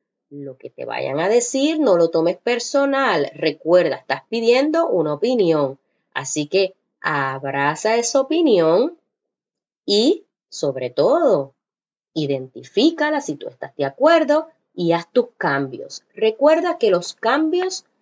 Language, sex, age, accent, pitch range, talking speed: English, female, 20-39, American, 160-270 Hz, 125 wpm